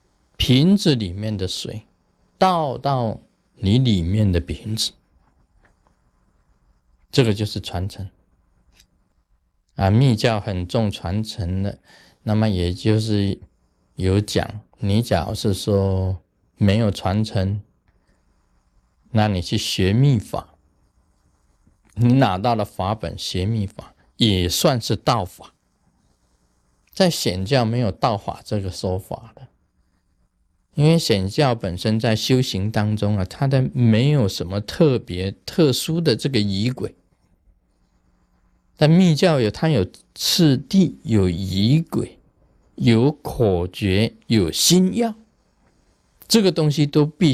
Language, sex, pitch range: Chinese, male, 95-130 Hz